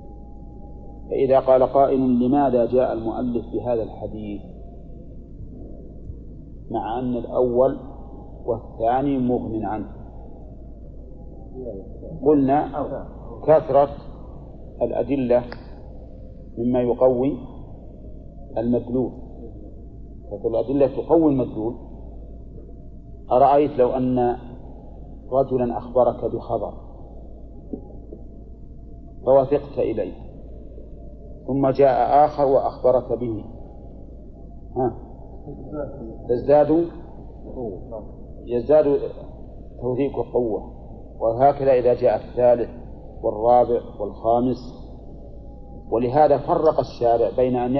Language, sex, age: Arabic, male, 50-69